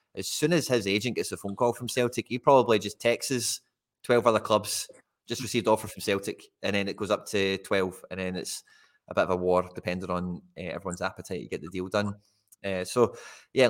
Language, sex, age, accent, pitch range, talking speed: English, male, 20-39, British, 100-115 Hz, 225 wpm